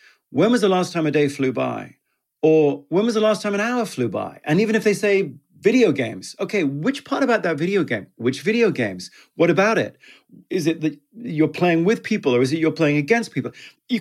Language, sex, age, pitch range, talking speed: English, male, 40-59, 145-205 Hz, 230 wpm